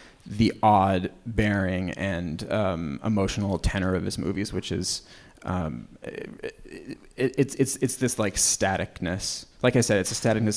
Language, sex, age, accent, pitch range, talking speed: English, male, 30-49, American, 100-115 Hz, 150 wpm